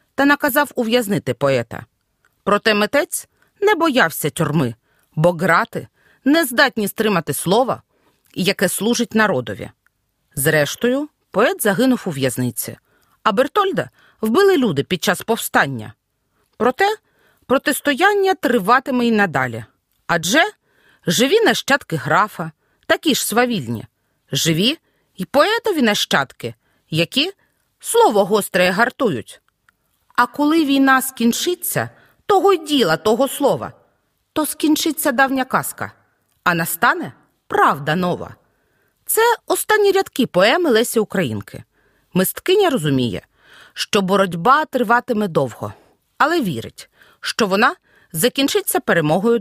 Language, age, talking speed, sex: Ukrainian, 40-59, 105 wpm, female